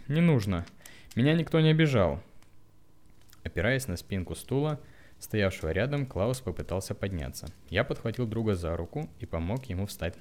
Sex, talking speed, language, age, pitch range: male, 140 wpm, Russian, 20-39, 85-130 Hz